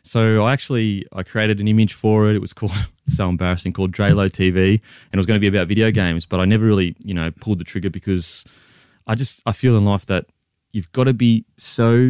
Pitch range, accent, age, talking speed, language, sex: 90-110 Hz, Australian, 20-39, 240 wpm, English, male